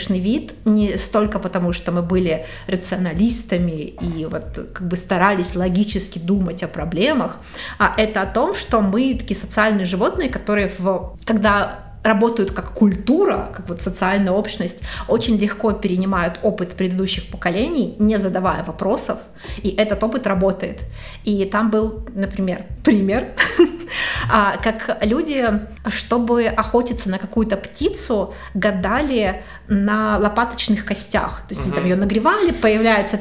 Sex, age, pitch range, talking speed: female, 30-49, 185-220 Hz, 130 wpm